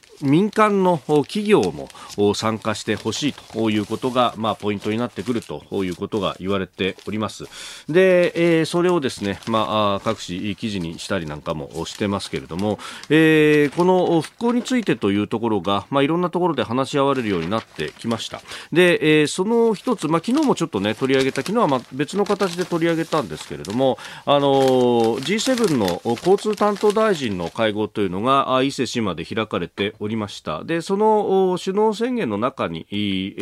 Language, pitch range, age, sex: Japanese, 105-175 Hz, 40-59, male